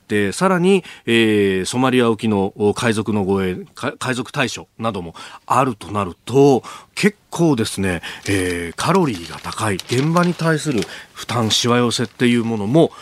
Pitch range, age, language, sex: 105-155 Hz, 30-49, Japanese, male